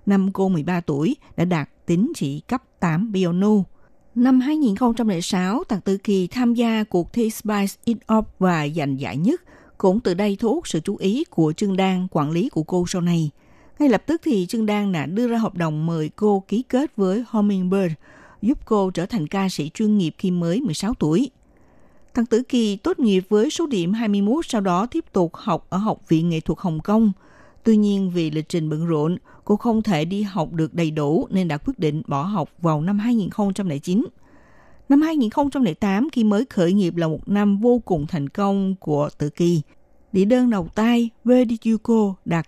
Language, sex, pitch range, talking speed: Vietnamese, female, 170-230 Hz, 200 wpm